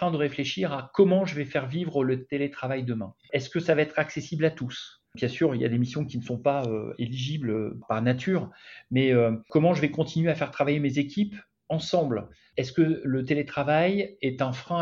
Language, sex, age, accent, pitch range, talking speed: French, male, 40-59, French, 130-170 Hz, 215 wpm